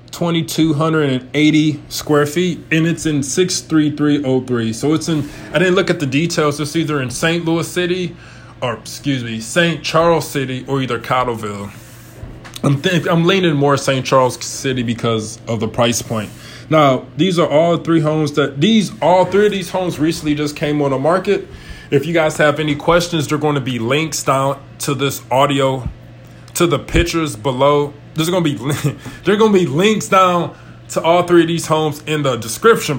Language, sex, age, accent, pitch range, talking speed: English, male, 20-39, American, 125-160 Hz, 180 wpm